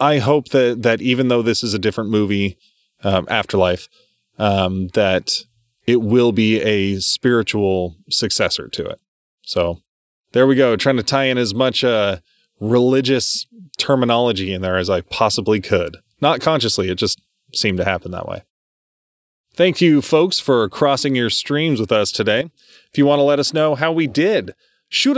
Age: 20-39